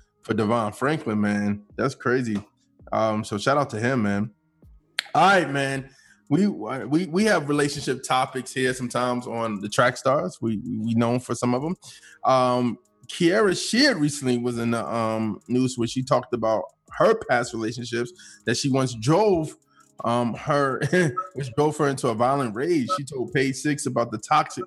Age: 20-39